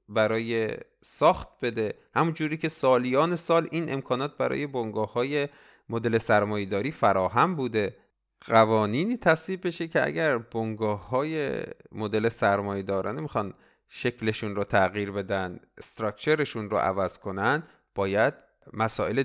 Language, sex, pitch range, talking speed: Persian, male, 100-130 Hz, 120 wpm